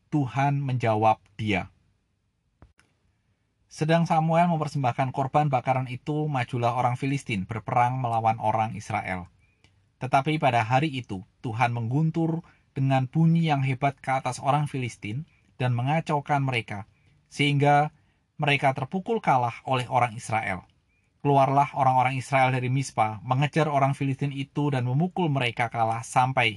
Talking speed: 120 wpm